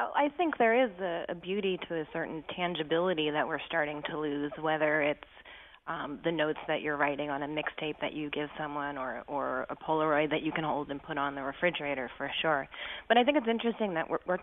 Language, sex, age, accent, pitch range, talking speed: English, female, 30-49, American, 150-175 Hz, 220 wpm